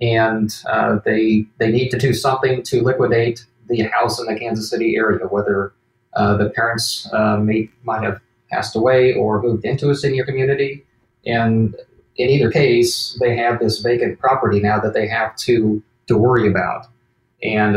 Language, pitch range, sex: English, 110-125 Hz, male